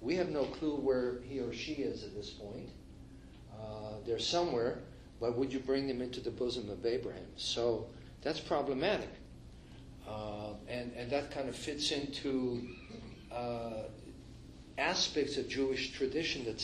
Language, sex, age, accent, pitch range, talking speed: English, male, 50-69, American, 115-135 Hz, 150 wpm